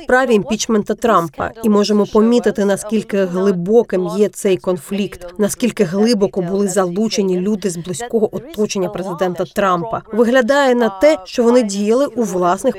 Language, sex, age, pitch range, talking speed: Ukrainian, female, 30-49, 195-250 Hz, 135 wpm